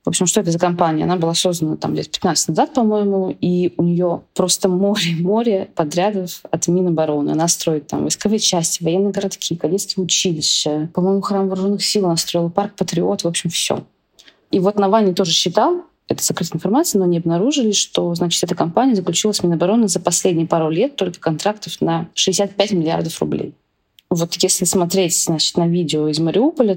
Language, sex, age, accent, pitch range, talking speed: Russian, female, 20-39, native, 165-195 Hz, 175 wpm